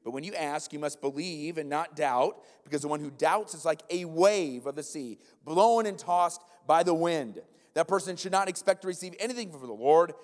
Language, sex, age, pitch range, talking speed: English, male, 30-49, 130-170 Hz, 230 wpm